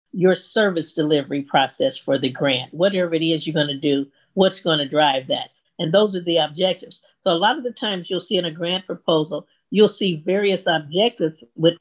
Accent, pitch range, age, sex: American, 160-215 Hz, 50-69, female